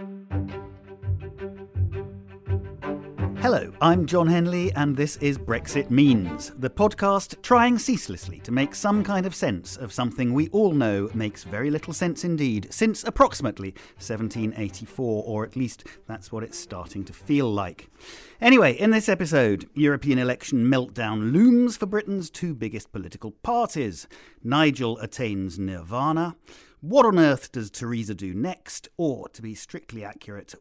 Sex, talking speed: male, 140 wpm